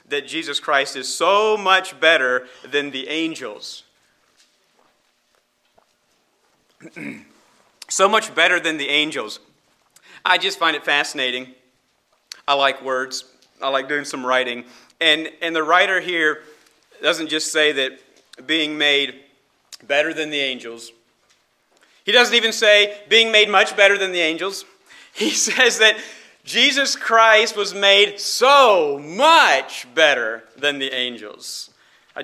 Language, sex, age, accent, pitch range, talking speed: English, male, 40-59, American, 135-195 Hz, 130 wpm